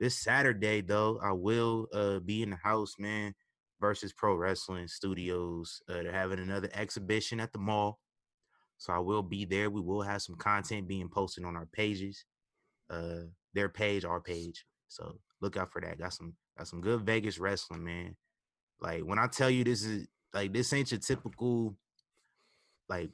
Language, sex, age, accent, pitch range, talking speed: English, male, 20-39, American, 90-110 Hz, 180 wpm